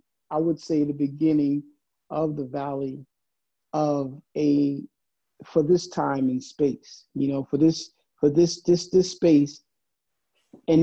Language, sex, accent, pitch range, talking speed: English, male, American, 145-170 Hz, 140 wpm